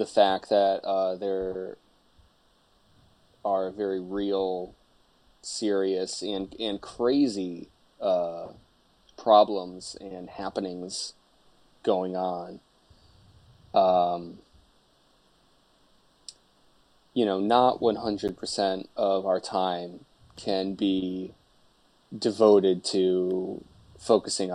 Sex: male